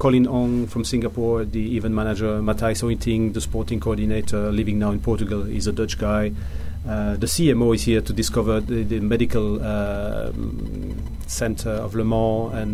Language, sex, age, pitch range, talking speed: English, male, 40-59, 105-115 Hz, 170 wpm